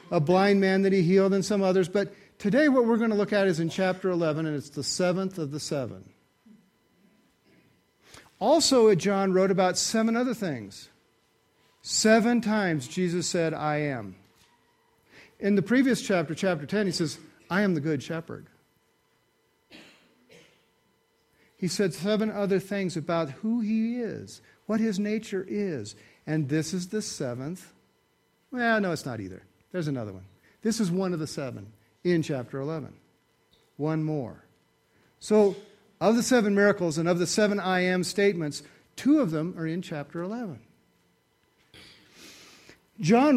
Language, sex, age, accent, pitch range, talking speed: English, male, 50-69, American, 155-205 Hz, 155 wpm